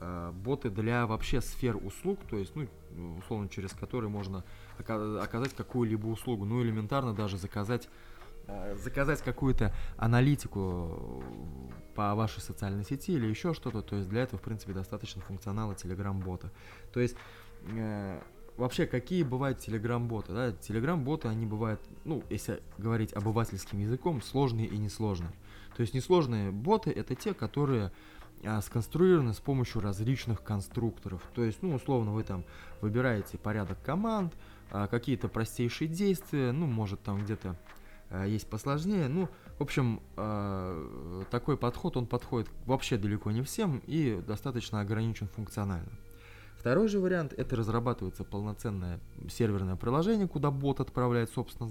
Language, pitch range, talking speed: Russian, 100-125 Hz, 130 wpm